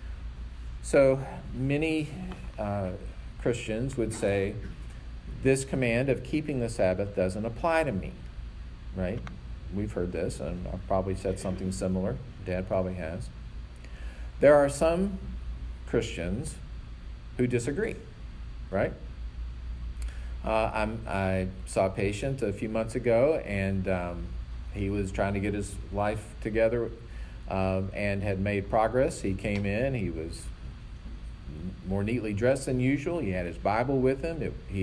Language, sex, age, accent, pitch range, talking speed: English, male, 40-59, American, 80-115 Hz, 135 wpm